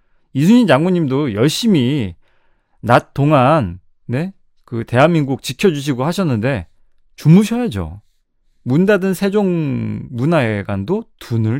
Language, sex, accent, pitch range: Korean, male, native, 105-170 Hz